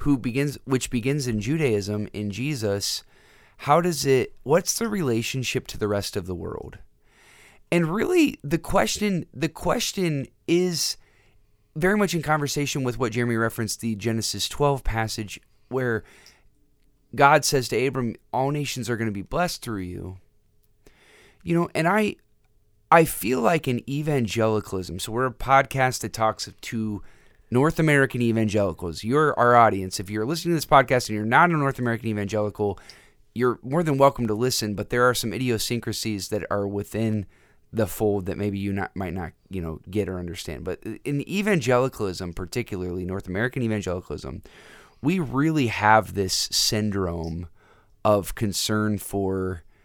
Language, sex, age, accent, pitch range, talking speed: English, male, 30-49, American, 100-135 Hz, 160 wpm